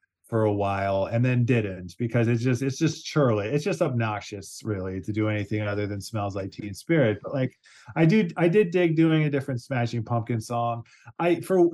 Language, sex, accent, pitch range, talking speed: English, male, American, 110-145 Hz, 205 wpm